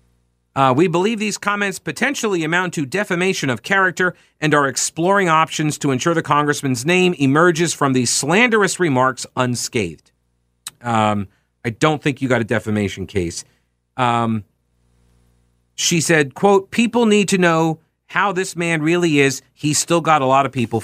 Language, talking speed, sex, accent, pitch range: English, 160 wpm, male, American, 105-165 Hz